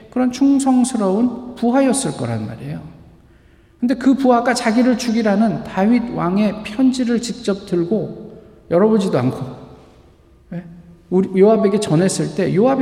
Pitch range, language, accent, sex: 155-225 Hz, Korean, native, male